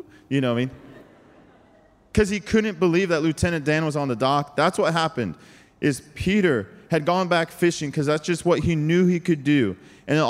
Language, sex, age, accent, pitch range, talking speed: English, male, 20-39, American, 105-160 Hz, 210 wpm